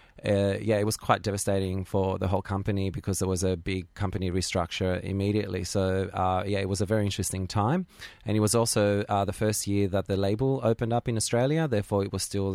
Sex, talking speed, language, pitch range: male, 220 wpm, English, 95-105 Hz